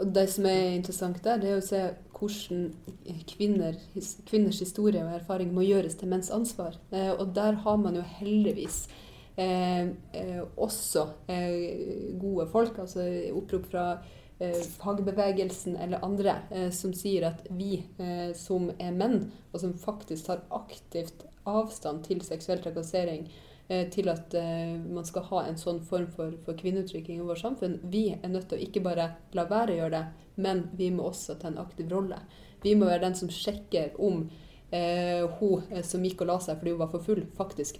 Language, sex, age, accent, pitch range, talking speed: English, female, 30-49, Swedish, 170-195 Hz, 170 wpm